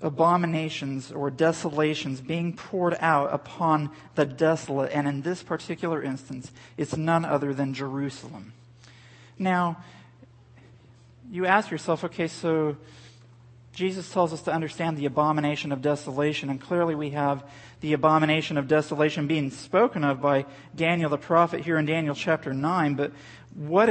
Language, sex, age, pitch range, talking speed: English, male, 40-59, 135-170 Hz, 140 wpm